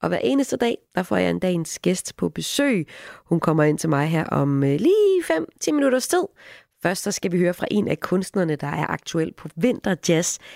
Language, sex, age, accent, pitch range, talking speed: Danish, female, 30-49, native, 150-200 Hz, 215 wpm